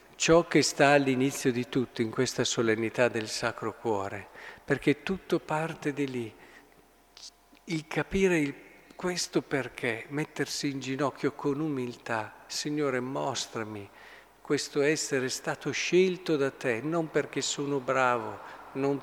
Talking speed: 125 wpm